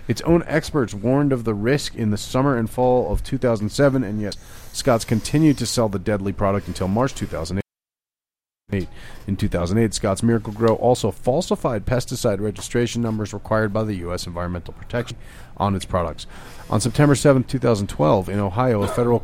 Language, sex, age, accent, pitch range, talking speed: English, male, 40-59, American, 95-120 Hz, 160 wpm